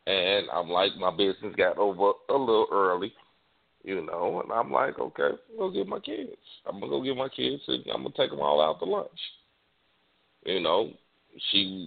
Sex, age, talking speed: male, 40-59, 200 wpm